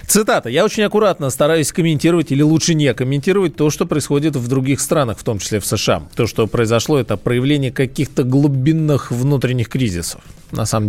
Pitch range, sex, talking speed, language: 110-150 Hz, male, 175 wpm, Russian